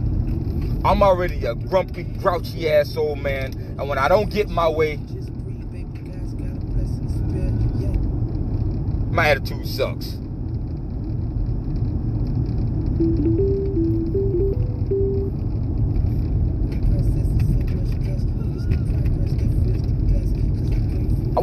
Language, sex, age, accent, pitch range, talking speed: English, male, 30-49, American, 105-130 Hz, 55 wpm